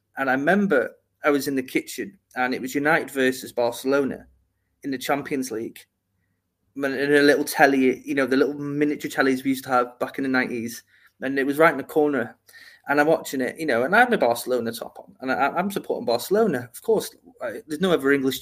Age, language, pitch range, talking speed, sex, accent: 30-49, English, 130-165 Hz, 220 wpm, male, British